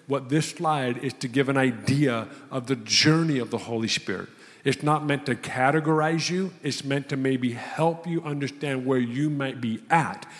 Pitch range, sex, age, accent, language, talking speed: 135-165 Hz, male, 50-69, American, English, 190 wpm